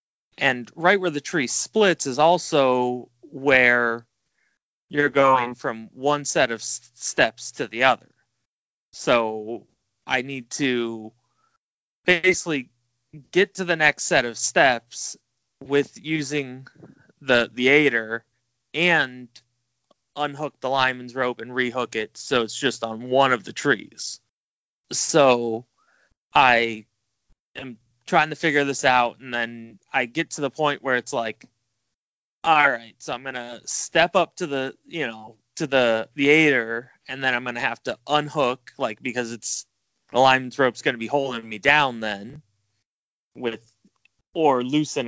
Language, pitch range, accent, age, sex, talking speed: English, 115-145 Hz, American, 20-39, male, 145 wpm